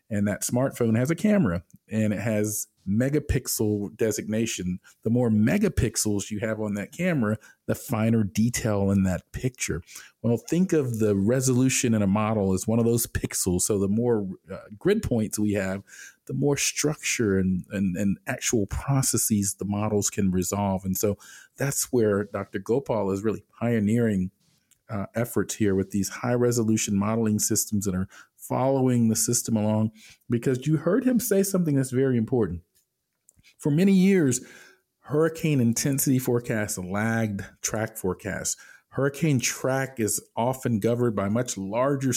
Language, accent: English, American